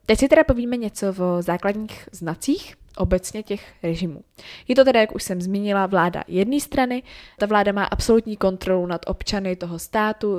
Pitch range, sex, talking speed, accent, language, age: 170-195 Hz, female, 175 wpm, native, Czech, 20-39